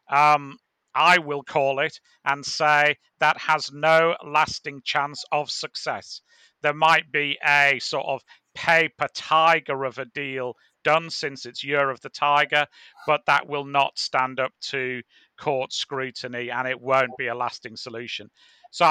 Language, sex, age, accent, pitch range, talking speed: English, male, 40-59, British, 135-160 Hz, 155 wpm